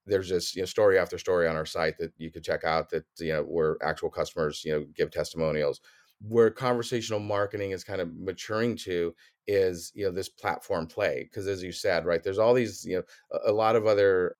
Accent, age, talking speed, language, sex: American, 30-49, 215 wpm, English, male